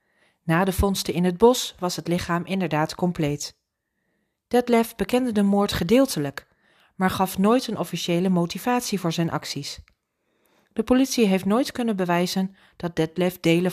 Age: 40-59